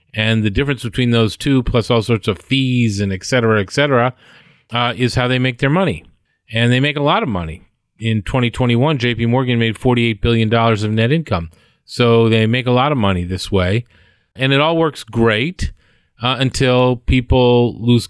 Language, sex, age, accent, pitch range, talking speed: English, male, 40-59, American, 100-120 Hz, 190 wpm